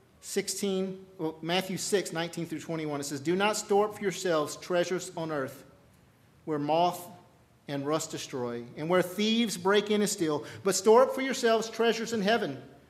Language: English